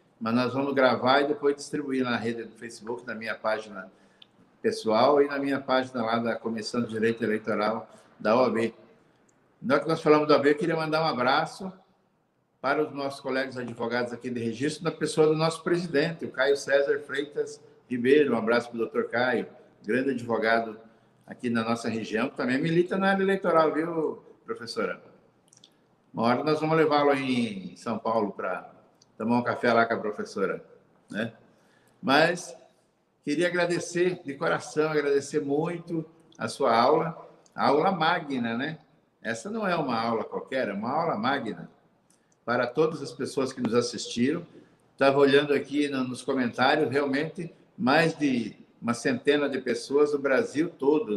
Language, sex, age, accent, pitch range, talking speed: Portuguese, male, 60-79, Brazilian, 120-155 Hz, 165 wpm